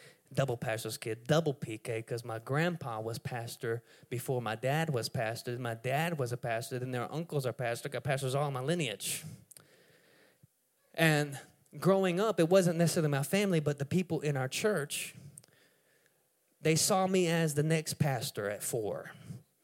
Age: 20-39